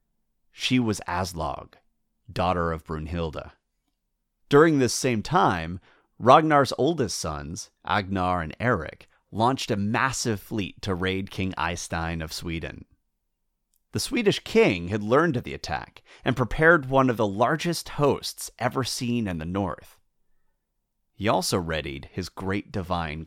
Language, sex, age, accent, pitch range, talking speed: English, male, 30-49, American, 85-115 Hz, 135 wpm